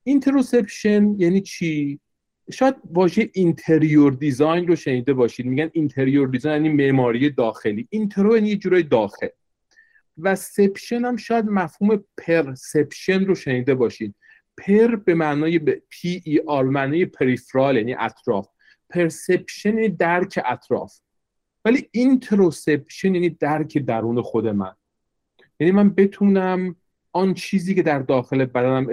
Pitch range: 130-195 Hz